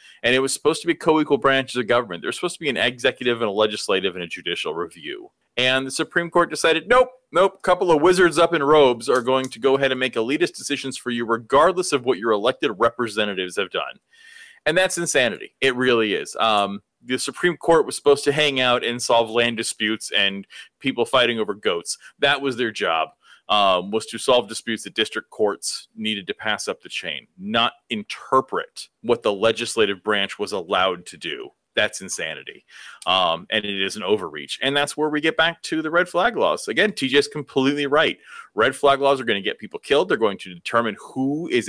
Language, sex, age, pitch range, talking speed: English, male, 30-49, 120-180 Hz, 210 wpm